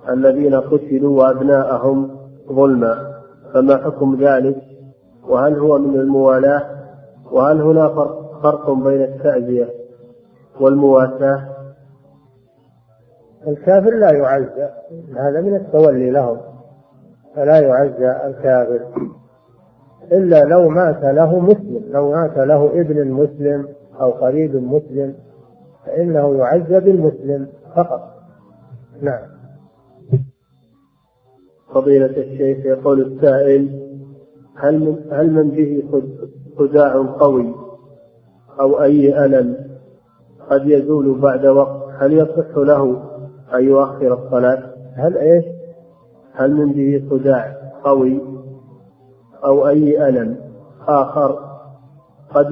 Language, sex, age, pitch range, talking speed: Arabic, male, 50-69, 130-150 Hz, 95 wpm